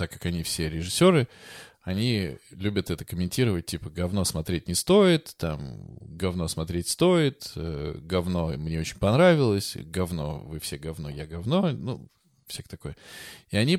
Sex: male